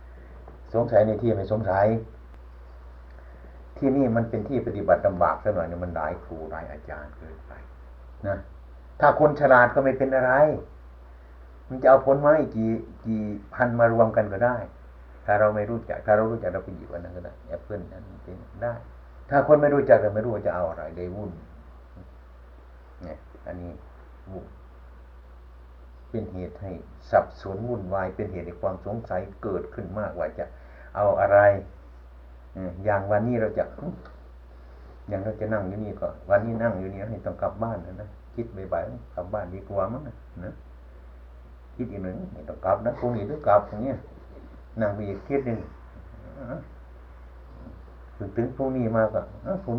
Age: 60-79